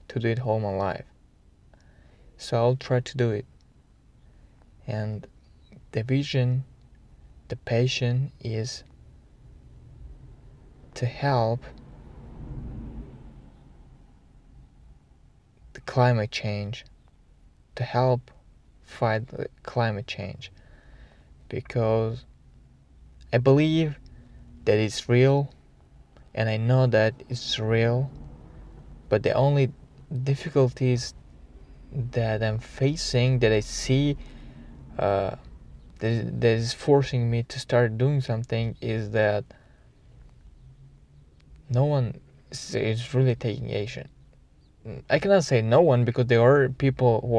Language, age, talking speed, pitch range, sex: English, 20-39, 100 wpm, 105-130 Hz, male